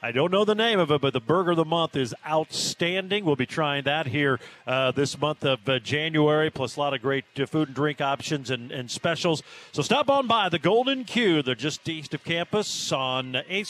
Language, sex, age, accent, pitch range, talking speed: English, male, 40-59, American, 140-185 Hz, 230 wpm